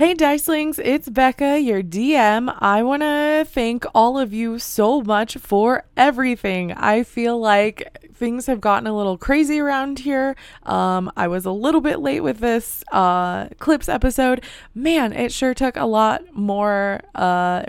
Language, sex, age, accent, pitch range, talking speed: English, female, 20-39, American, 190-250 Hz, 165 wpm